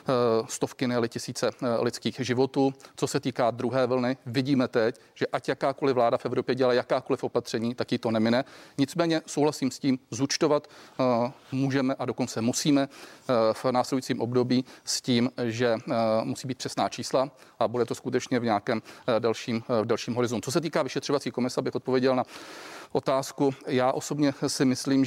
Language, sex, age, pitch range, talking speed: Czech, male, 40-59, 120-135 Hz, 160 wpm